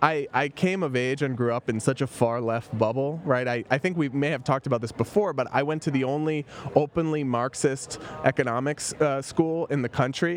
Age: 20-39